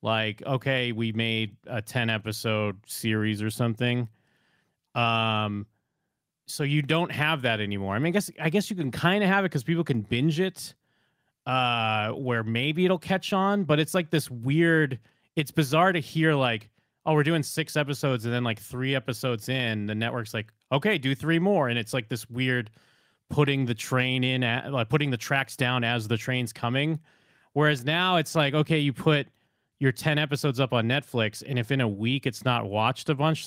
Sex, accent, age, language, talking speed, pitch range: male, American, 30-49, English, 190 wpm, 115-150 Hz